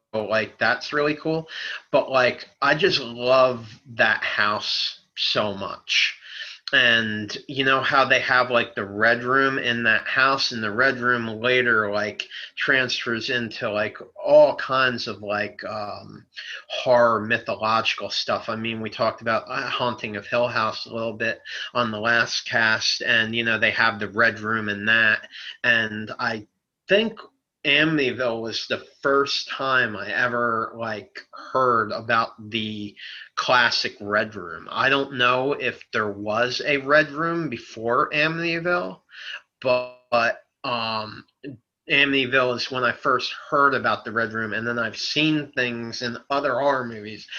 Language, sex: English, male